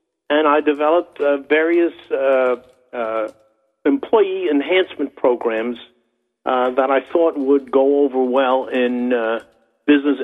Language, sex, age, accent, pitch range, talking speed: English, male, 60-79, American, 140-165 Hz, 125 wpm